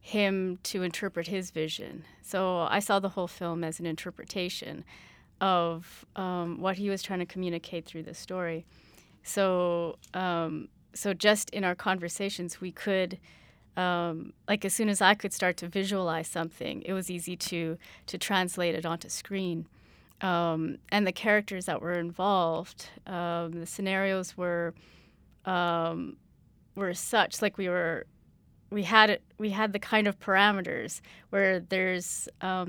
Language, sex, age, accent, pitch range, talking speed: English, female, 30-49, American, 170-200 Hz, 150 wpm